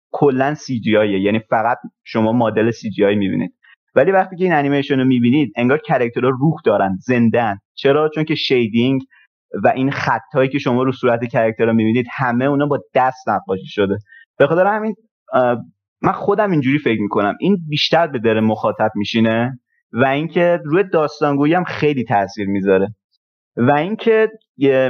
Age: 30-49